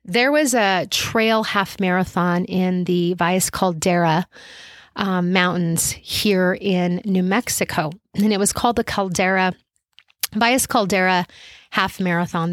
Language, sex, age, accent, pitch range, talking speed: English, female, 30-49, American, 175-220 Hz, 125 wpm